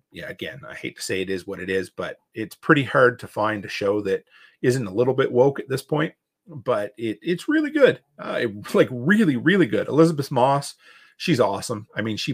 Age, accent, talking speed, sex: 40-59, American, 225 wpm, male